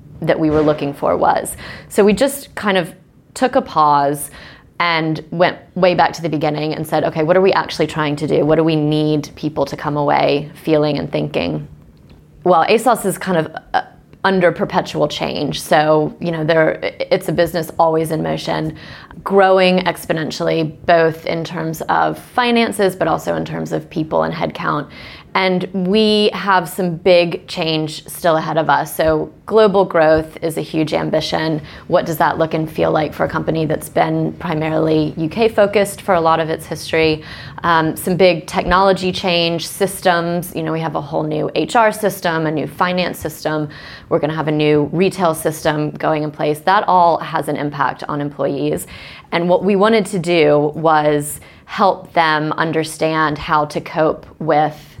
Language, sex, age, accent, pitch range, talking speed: English, female, 20-39, American, 150-185 Hz, 180 wpm